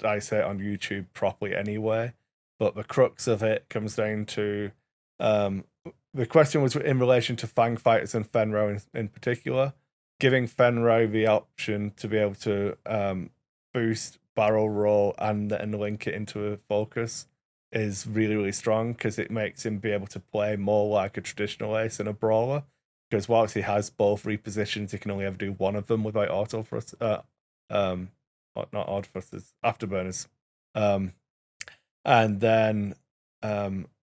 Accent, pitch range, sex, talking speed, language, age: British, 105-115 Hz, male, 165 wpm, English, 20-39